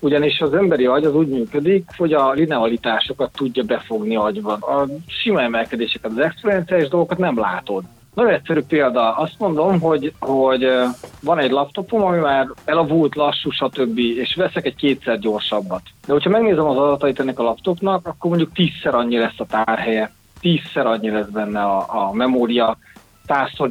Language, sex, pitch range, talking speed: Hungarian, male, 120-150 Hz, 160 wpm